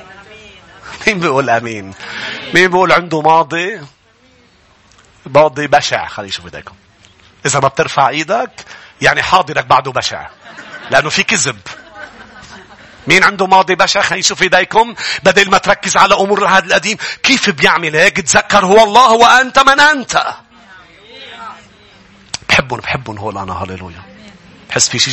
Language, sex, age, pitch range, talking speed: English, male, 40-59, 130-195 Hz, 125 wpm